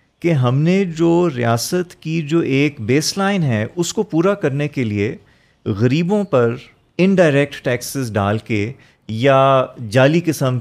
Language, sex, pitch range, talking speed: Urdu, male, 110-165 Hz, 145 wpm